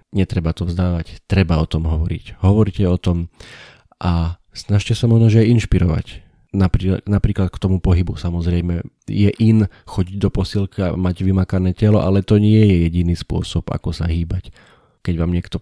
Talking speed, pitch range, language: 160 wpm, 90-105 Hz, Slovak